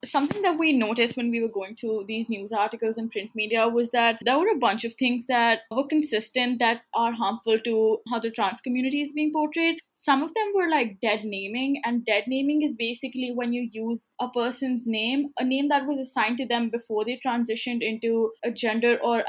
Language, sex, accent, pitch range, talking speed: English, female, Indian, 230-270 Hz, 215 wpm